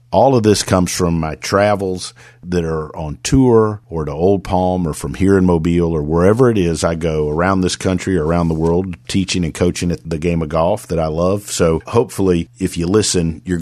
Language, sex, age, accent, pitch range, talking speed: English, male, 50-69, American, 85-95 Hz, 215 wpm